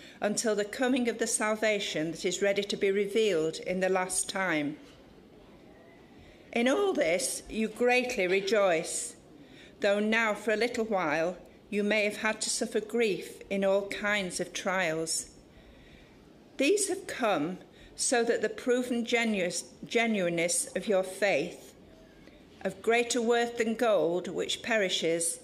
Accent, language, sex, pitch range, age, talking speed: British, English, female, 180-235 Hz, 50-69, 135 wpm